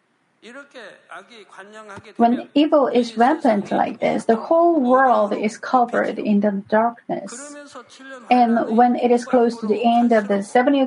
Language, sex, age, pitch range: Korean, female, 40-59, 220-270 Hz